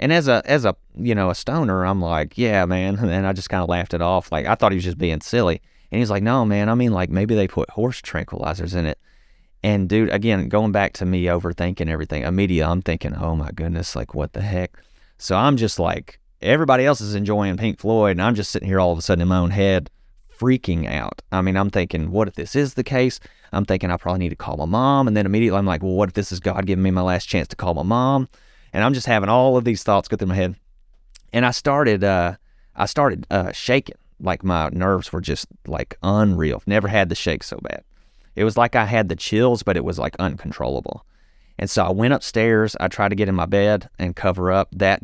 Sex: male